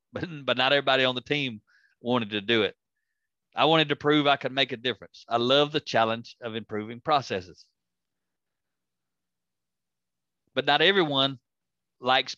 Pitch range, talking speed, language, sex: 110-165 Hz, 150 wpm, English, male